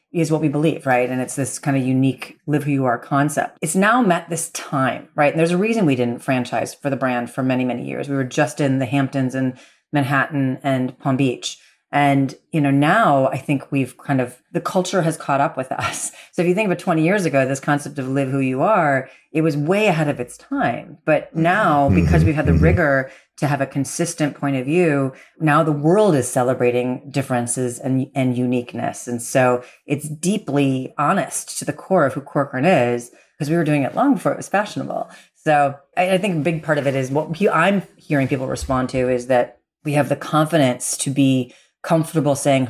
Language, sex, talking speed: English, female, 220 wpm